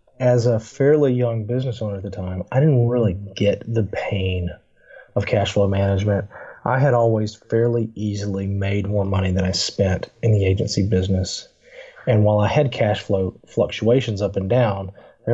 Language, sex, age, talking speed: English, male, 30-49, 175 wpm